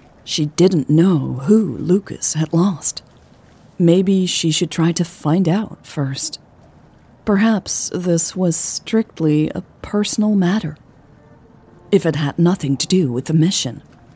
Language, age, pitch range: English, 40-59, 145-190 Hz